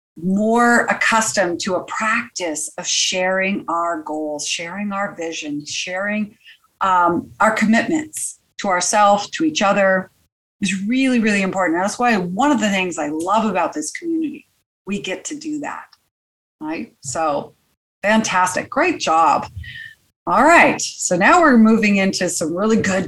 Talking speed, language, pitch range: 145 wpm, English, 185-240 Hz